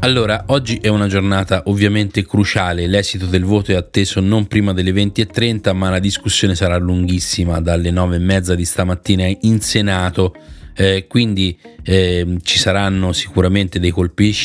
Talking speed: 145 wpm